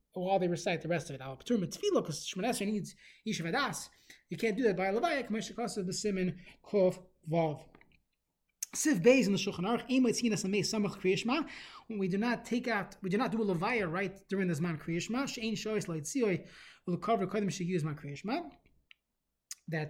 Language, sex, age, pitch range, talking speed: English, male, 20-39, 180-235 Hz, 195 wpm